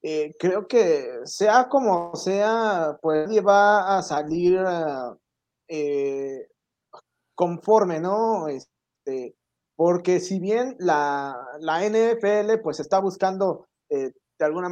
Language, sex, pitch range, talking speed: Spanish, male, 155-215 Hz, 105 wpm